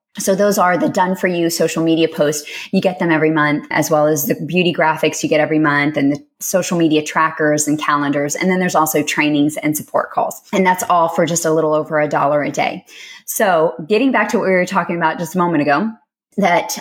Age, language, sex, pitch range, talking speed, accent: 20-39, English, female, 155-190 Hz, 235 wpm, American